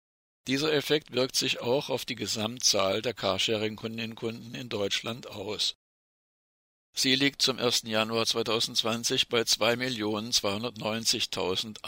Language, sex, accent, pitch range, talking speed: German, male, German, 110-135 Hz, 105 wpm